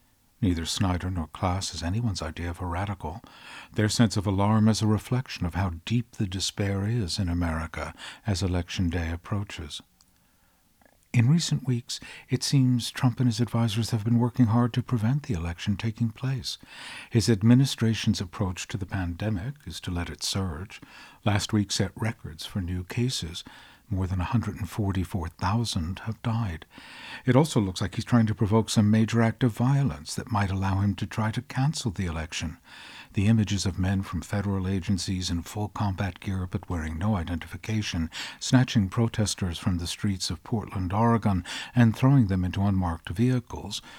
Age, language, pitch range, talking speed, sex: 60-79, English, 90-115 Hz, 170 wpm, male